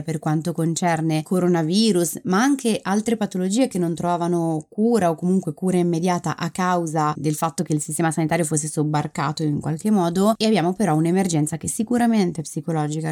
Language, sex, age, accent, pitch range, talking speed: Italian, female, 20-39, native, 155-185 Hz, 165 wpm